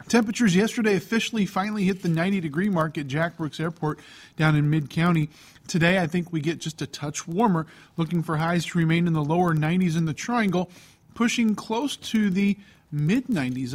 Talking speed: 180 wpm